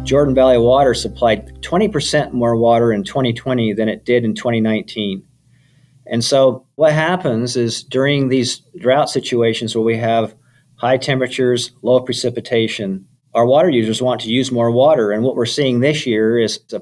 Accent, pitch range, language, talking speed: American, 115-135 Hz, English, 165 wpm